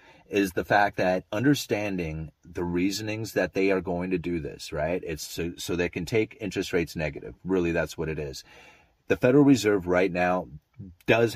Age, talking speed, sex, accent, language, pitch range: 30-49, 185 wpm, male, American, English, 85-100 Hz